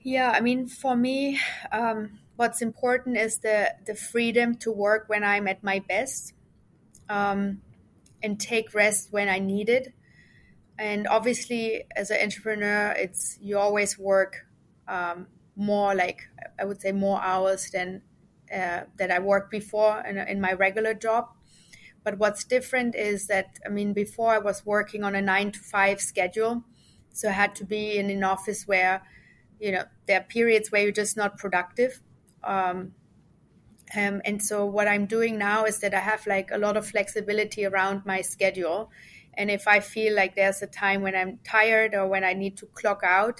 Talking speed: 175 wpm